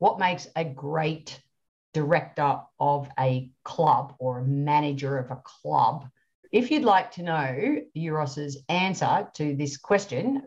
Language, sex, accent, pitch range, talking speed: English, female, Australian, 145-185 Hz, 140 wpm